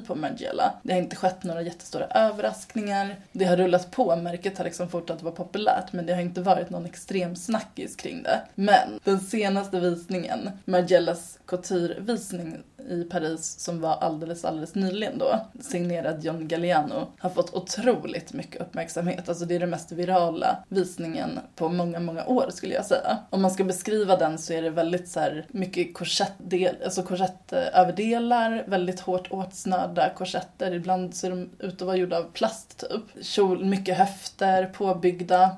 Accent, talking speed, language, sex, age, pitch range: native, 160 wpm, Swedish, female, 20-39, 180-195 Hz